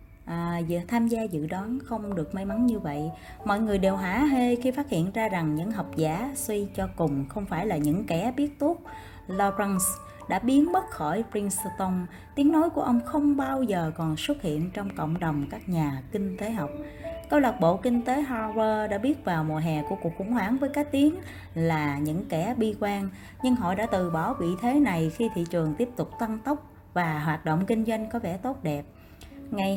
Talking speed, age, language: 215 wpm, 20-39, Vietnamese